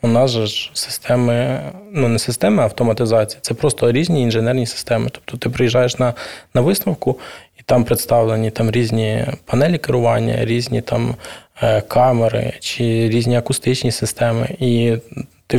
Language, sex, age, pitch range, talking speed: Ukrainian, male, 20-39, 115-125 Hz, 140 wpm